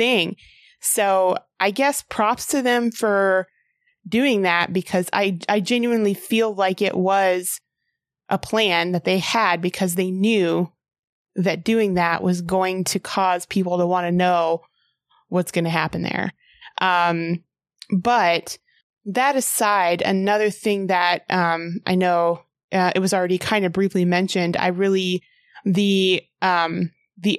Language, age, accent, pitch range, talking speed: English, 20-39, American, 180-205 Hz, 145 wpm